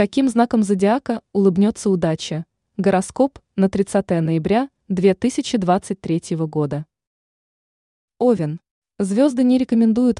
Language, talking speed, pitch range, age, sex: Russian, 90 wpm, 170-225 Hz, 20-39, female